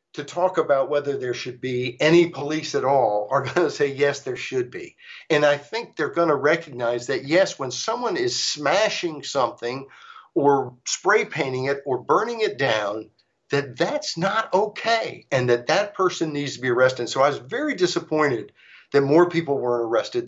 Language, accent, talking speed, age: English, American, 185 wpm, 60-79